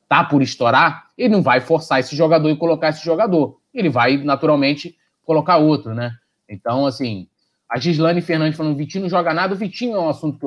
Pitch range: 120-165 Hz